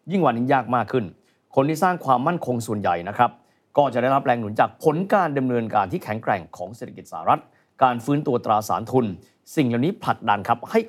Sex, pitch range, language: male, 120-170 Hz, Thai